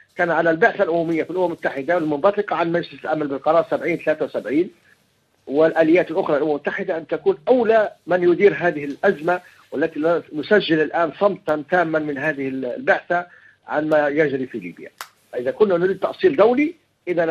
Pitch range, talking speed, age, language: 150-200 Hz, 165 wpm, 50-69, Arabic